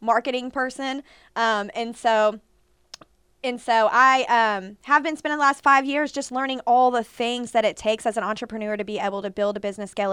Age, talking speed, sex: 20-39, 205 wpm, female